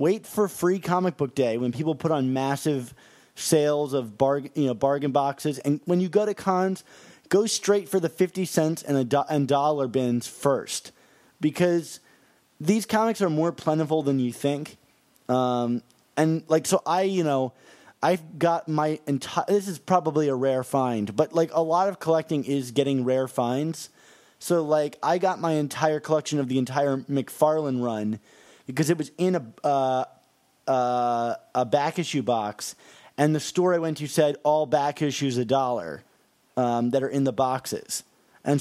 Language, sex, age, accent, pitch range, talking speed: English, male, 20-39, American, 135-165 Hz, 180 wpm